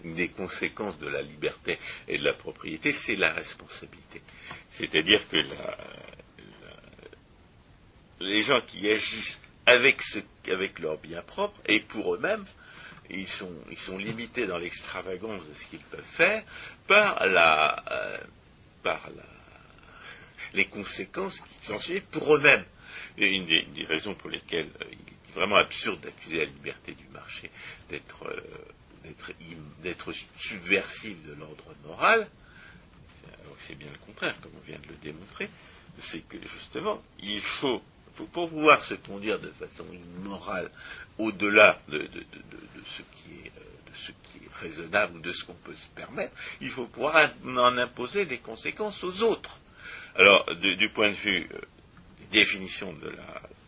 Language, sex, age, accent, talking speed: French, male, 60-79, French, 160 wpm